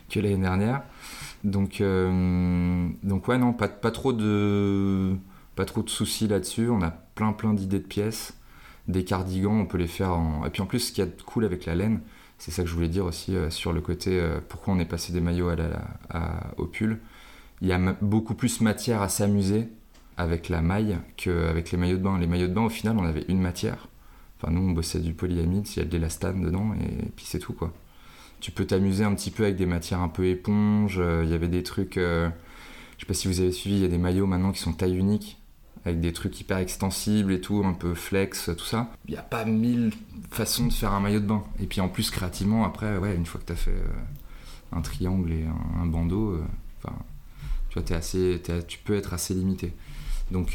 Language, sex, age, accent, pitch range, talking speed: French, male, 20-39, French, 85-105 Hz, 240 wpm